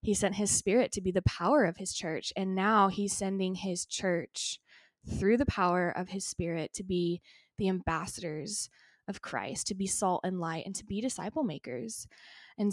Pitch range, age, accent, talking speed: 185-205 Hz, 20-39, American, 190 wpm